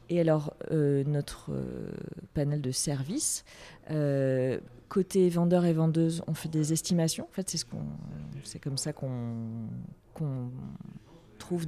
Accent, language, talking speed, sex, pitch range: French, French, 140 wpm, female, 140-170 Hz